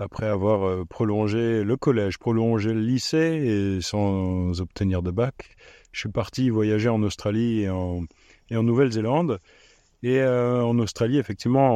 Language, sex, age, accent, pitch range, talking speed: French, male, 30-49, French, 100-125 Hz, 155 wpm